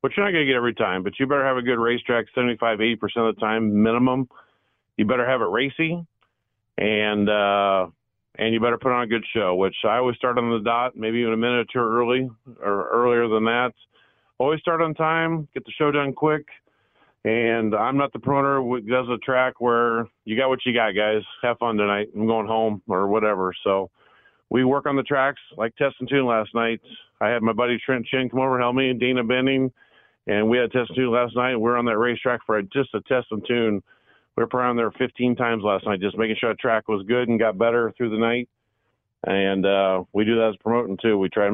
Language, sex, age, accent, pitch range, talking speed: English, male, 40-59, American, 110-130 Hz, 240 wpm